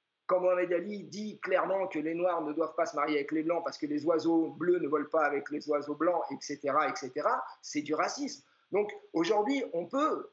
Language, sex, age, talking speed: French, male, 50-69, 215 wpm